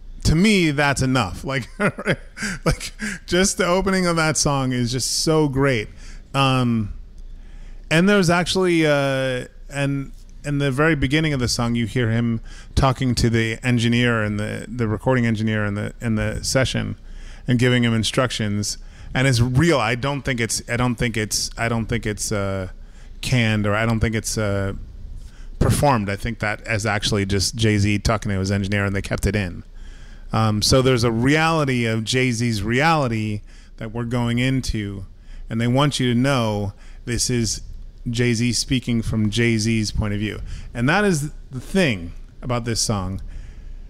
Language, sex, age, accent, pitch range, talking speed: English, male, 30-49, American, 105-140 Hz, 170 wpm